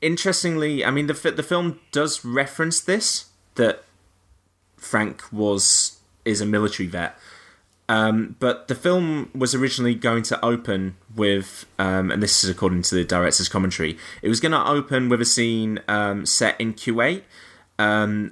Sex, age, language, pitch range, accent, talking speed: male, 20-39, English, 95-115 Hz, British, 155 wpm